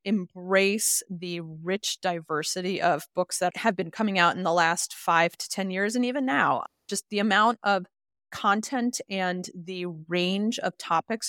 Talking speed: 165 wpm